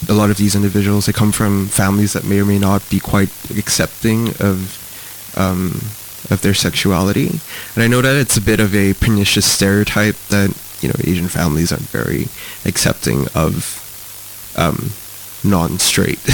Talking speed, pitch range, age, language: 160 wpm, 100-110 Hz, 20-39, English